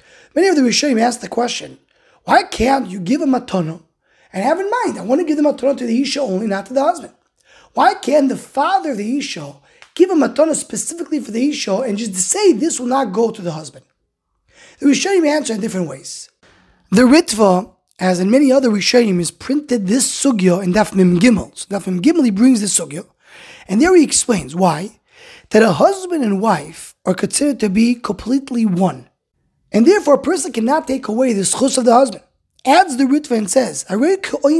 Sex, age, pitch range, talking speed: male, 20-39, 210-300 Hz, 205 wpm